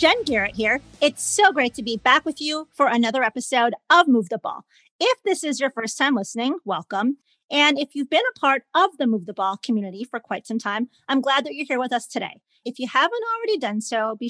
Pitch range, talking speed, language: 225-290 Hz, 240 wpm, English